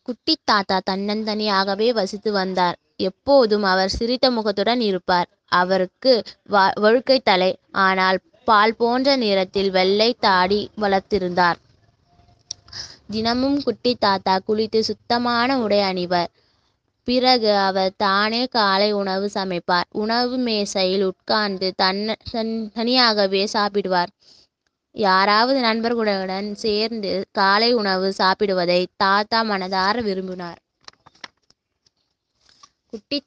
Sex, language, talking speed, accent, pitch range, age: female, Tamil, 85 wpm, native, 190-230 Hz, 20-39